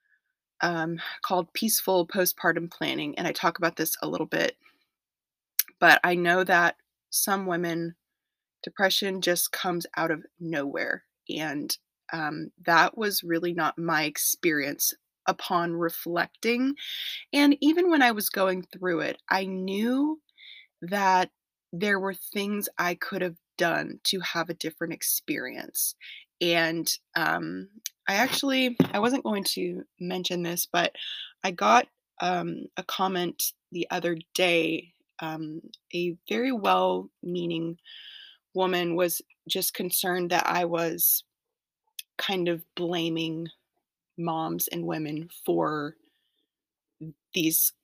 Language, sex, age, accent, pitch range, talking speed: English, female, 20-39, American, 165-200 Hz, 120 wpm